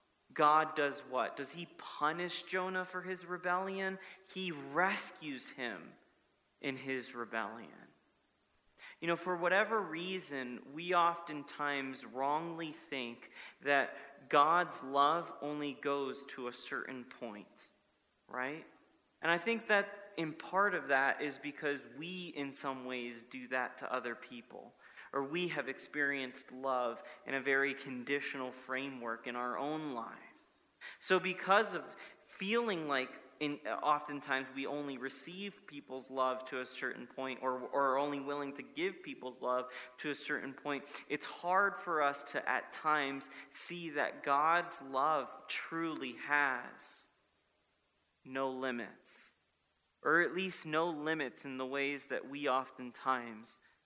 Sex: male